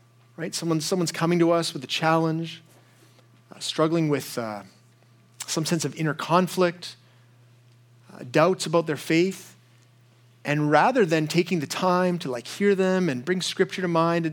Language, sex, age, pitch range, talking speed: English, male, 30-49, 125-185 Hz, 160 wpm